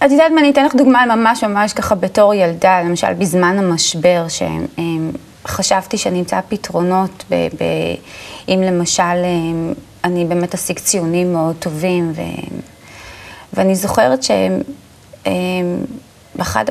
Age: 30-49